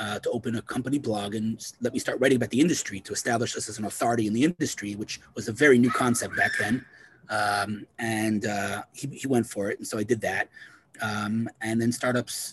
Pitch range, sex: 110-130 Hz, male